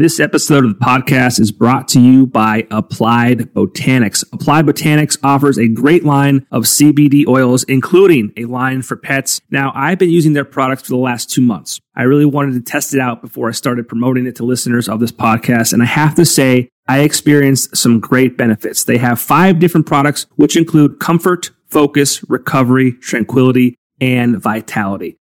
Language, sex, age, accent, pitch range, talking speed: English, male, 30-49, American, 120-150 Hz, 185 wpm